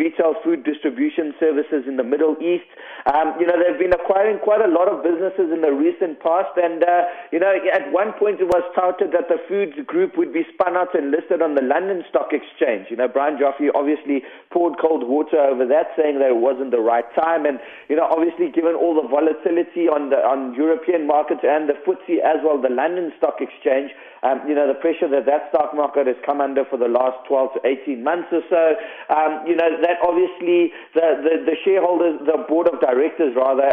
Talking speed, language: 220 wpm, English